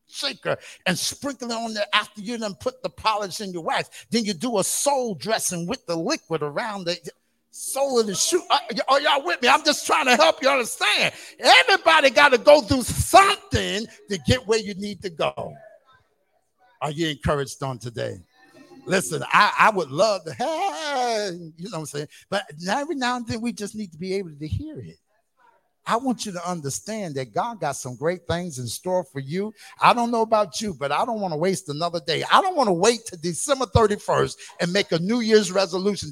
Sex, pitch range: male, 145-230 Hz